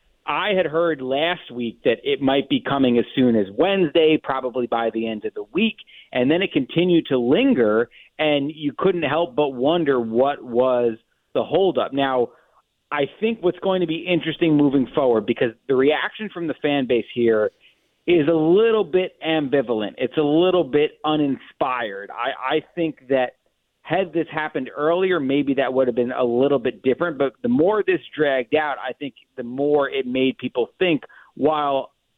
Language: English